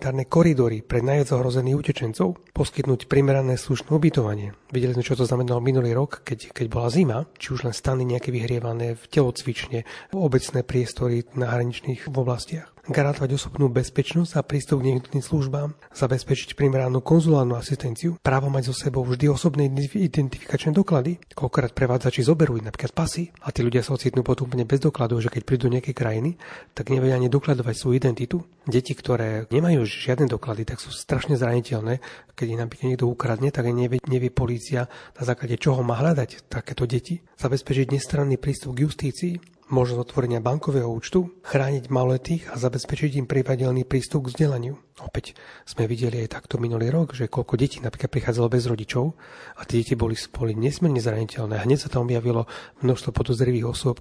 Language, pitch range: Slovak, 120-140 Hz